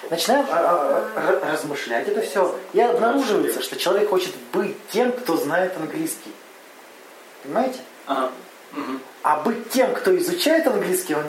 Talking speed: 115 wpm